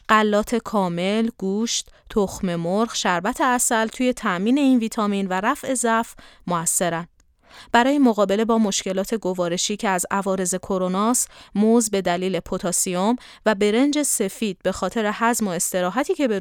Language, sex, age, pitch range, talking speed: Persian, female, 30-49, 180-230 Hz, 140 wpm